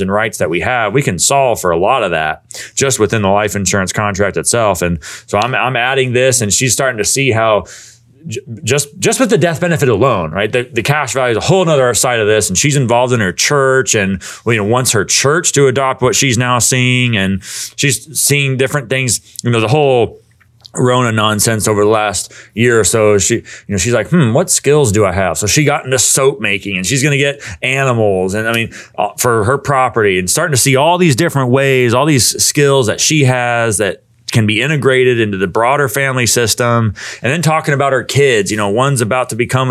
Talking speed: 230 wpm